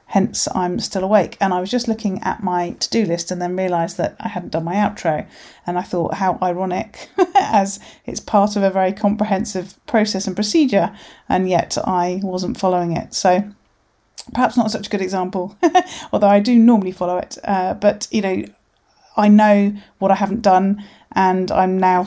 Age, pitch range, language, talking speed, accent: 30-49, 180-210 Hz, English, 190 wpm, British